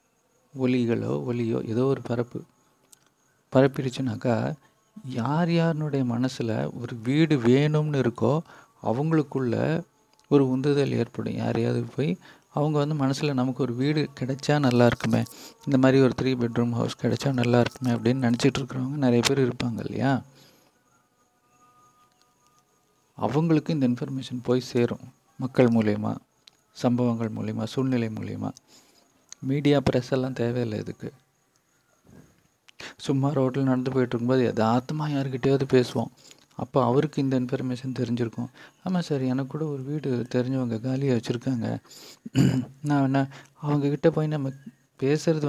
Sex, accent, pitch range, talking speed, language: male, native, 120-140 Hz, 115 wpm, Tamil